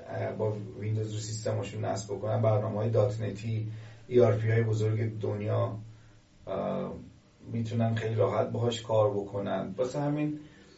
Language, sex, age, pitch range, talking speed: Persian, male, 30-49, 105-125 Hz, 115 wpm